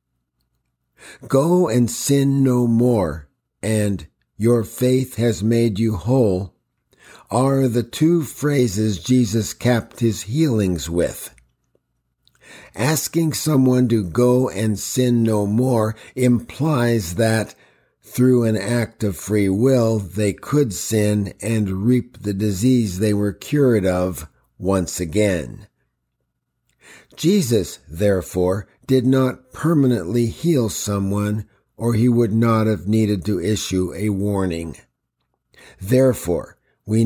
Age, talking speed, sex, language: 50-69, 110 wpm, male, English